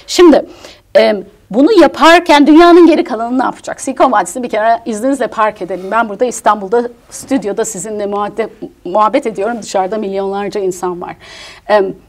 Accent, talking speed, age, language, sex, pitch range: native, 145 wpm, 60-79, Turkish, female, 195-265 Hz